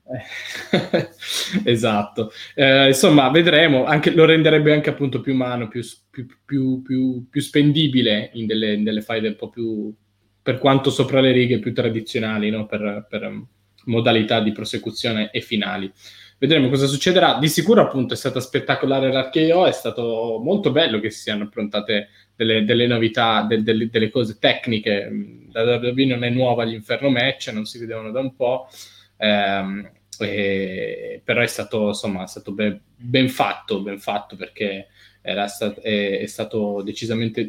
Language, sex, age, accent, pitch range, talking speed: Italian, male, 20-39, native, 110-135 Hz, 155 wpm